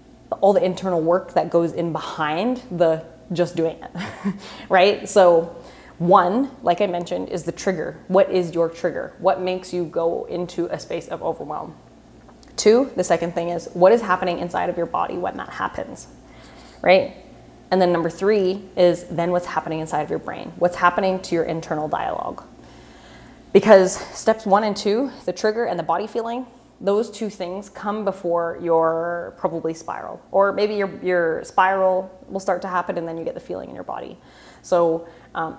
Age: 20-39